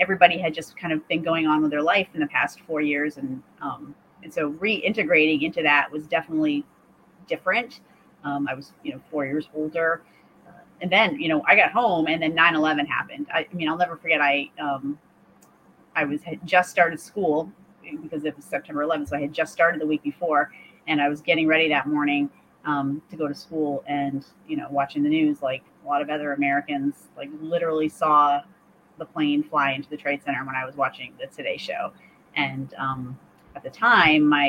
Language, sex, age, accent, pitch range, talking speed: English, female, 30-49, American, 145-175 Hz, 205 wpm